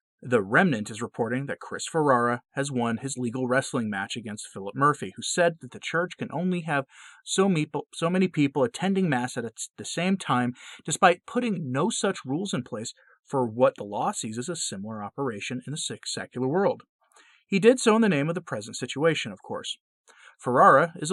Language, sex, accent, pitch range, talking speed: English, male, American, 125-175 Hz, 195 wpm